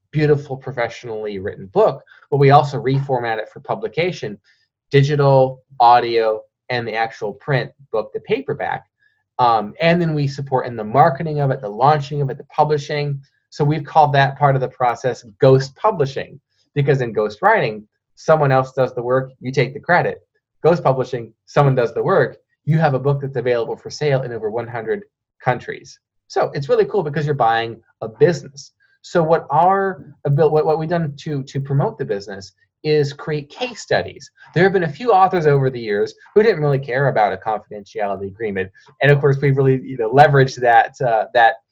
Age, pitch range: 20-39, 130-160 Hz